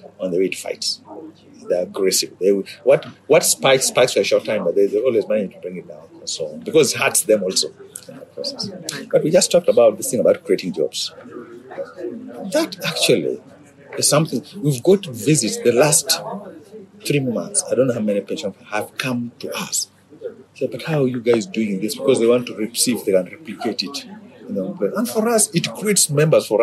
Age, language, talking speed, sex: 50-69, English, 205 wpm, male